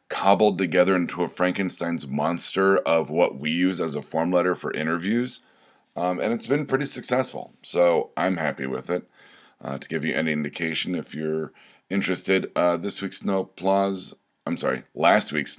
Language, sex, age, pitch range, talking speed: English, male, 30-49, 80-100 Hz, 175 wpm